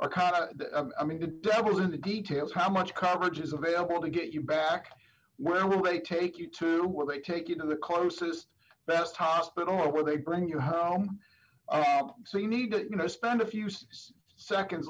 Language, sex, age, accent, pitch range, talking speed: English, male, 50-69, American, 160-190 Hz, 205 wpm